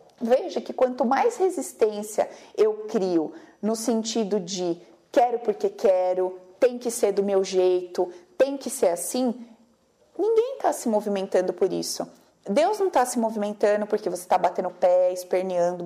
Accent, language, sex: Brazilian, Portuguese, female